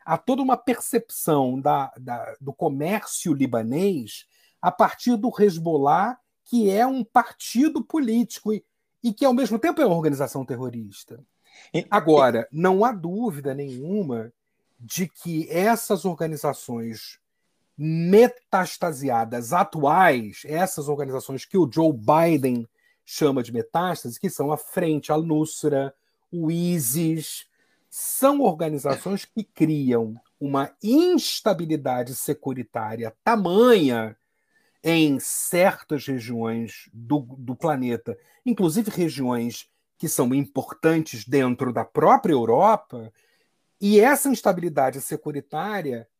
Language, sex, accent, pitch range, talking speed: Portuguese, male, Brazilian, 135-200 Hz, 105 wpm